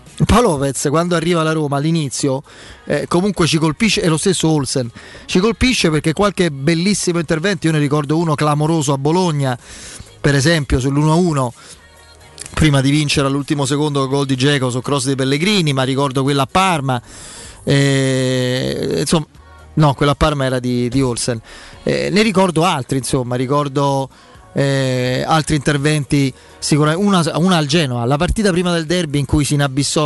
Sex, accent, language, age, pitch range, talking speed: male, native, Italian, 30-49, 130-160 Hz, 160 wpm